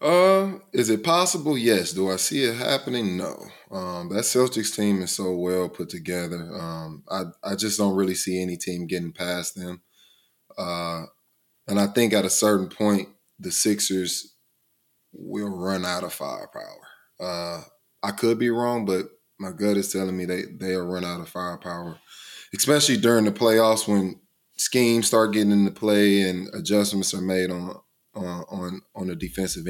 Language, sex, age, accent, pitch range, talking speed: English, male, 20-39, American, 90-105 Hz, 170 wpm